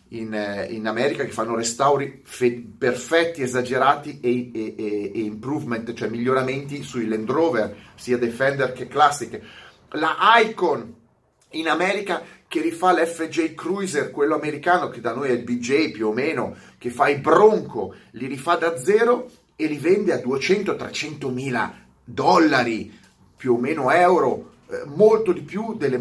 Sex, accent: male, native